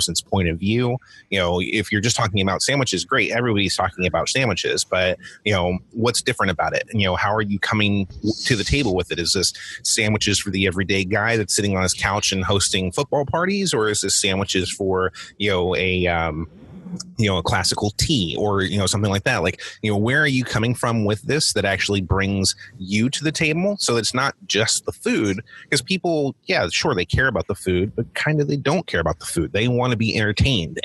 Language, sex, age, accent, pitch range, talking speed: English, male, 30-49, American, 95-120 Hz, 230 wpm